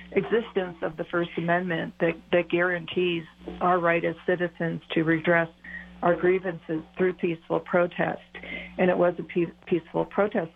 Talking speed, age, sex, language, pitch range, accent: 150 wpm, 50-69, female, English, 165-180 Hz, American